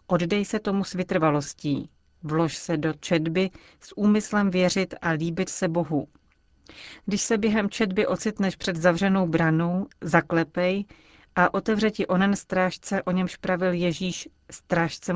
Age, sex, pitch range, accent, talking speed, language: 40-59, female, 155-190 Hz, native, 140 wpm, Czech